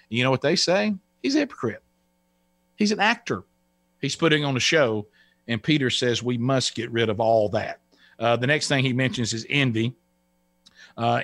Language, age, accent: English, 50-69, American